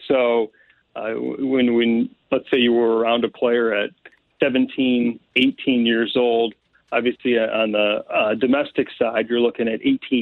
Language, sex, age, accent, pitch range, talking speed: English, male, 40-59, American, 115-135 Hz, 155 wpm